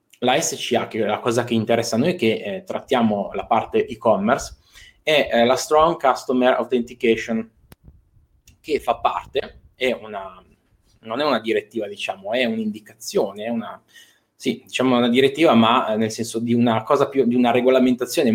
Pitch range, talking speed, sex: 110-135 Hz, 165 wpm, male